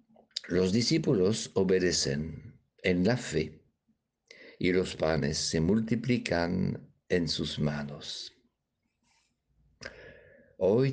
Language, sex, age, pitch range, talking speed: Spanish, male, 60-79, 80-100 Hz, 80 wpm